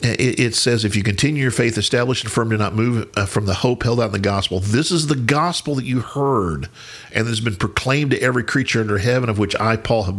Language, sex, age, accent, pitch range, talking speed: English, male, 50-69, American, 95-120 Hz, 245 wpm